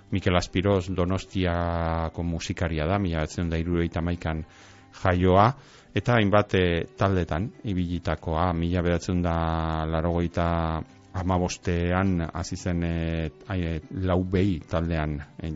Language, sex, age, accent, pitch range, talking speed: Spanish, male, 30-49, Spanish, 80-95 Hz, 95 wpm